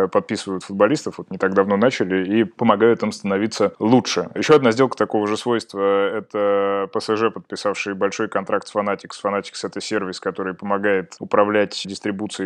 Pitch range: 100-110 Hz